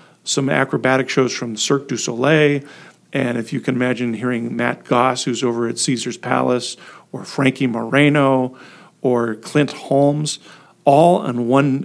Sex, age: male, 50-69